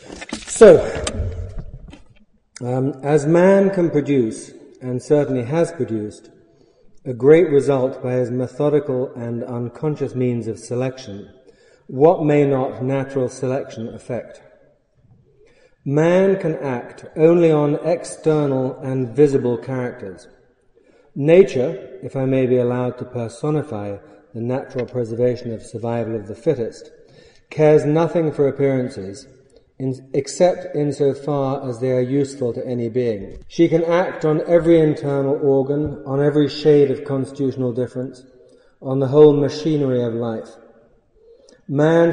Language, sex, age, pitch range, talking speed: English, male, 40-59, 125-150 Hz, 120 wpm